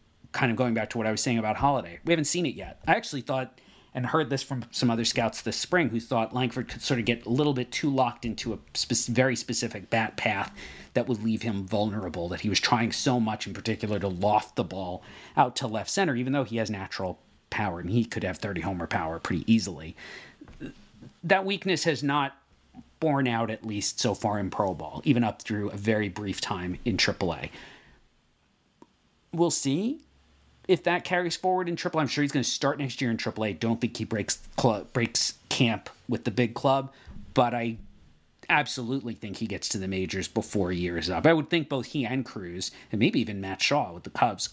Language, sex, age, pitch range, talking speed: English, male, 40-59, 105-135 Hz, 220 wpm